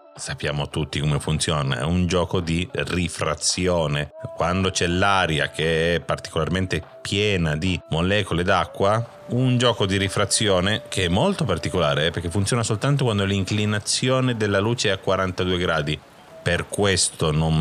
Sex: male